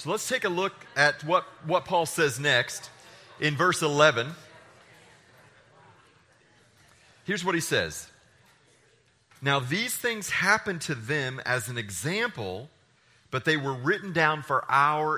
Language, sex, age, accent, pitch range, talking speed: English, male, 30-49, American, 125-170 Hz, 135 wpm